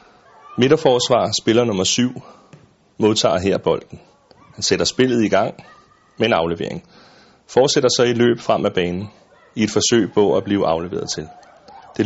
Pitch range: 100-120 Hz